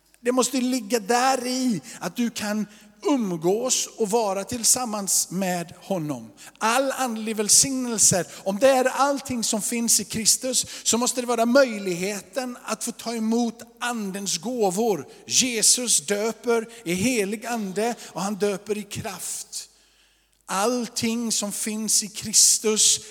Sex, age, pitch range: male, 50-69, 190-230 Hz